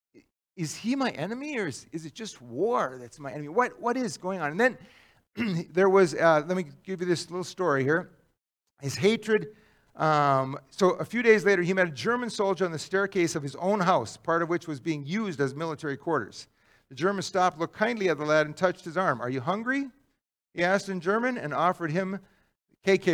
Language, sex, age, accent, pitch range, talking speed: English, male, 50-69, American, 150-200 Hz, 215 wpm